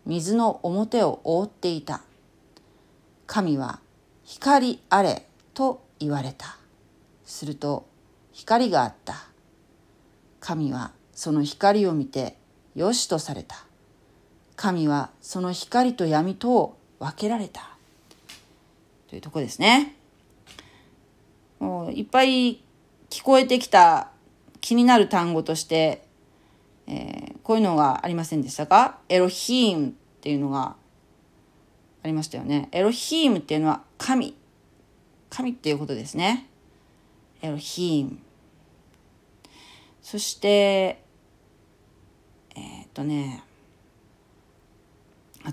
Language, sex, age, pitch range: Japanese, female, 40-59, 145-230 Hz